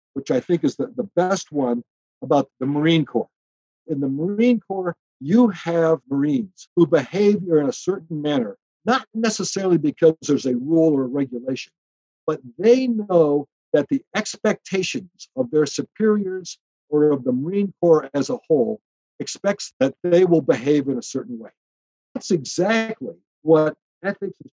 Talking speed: 160 wpm